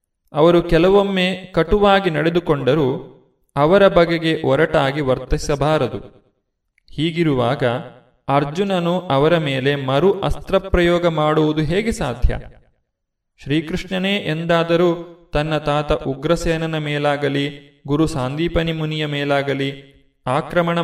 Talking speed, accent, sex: 80 wpm, native, male